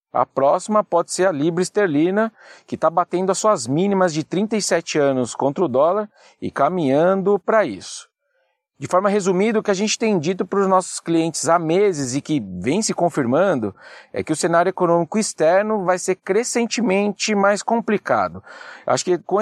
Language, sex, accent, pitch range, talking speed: Portuguese, male, Brazilian, 165-205 Hz, 175 wpm